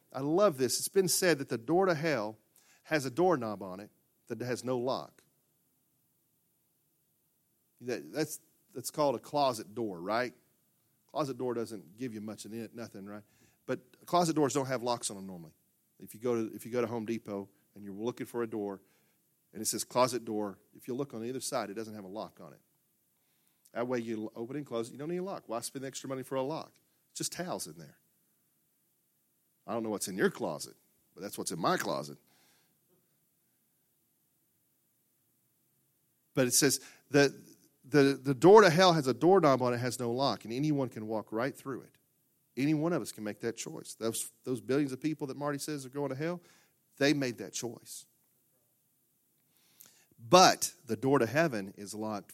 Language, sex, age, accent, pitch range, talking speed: English, male, 40-59, American, 110-145 Hz, 195 wpm